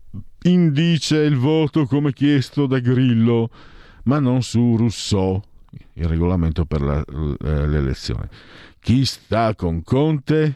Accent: native